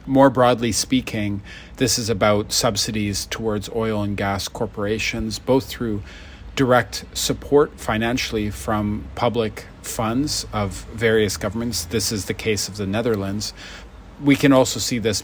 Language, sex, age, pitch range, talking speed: English, male, 40-59, 100-115 Hz, 140 wpm